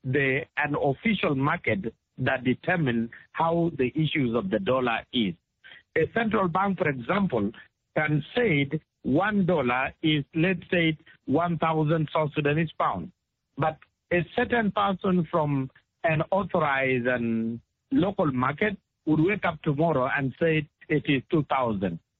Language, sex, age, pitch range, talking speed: English, male, 60-79, 135-180 Hz, 130 wpm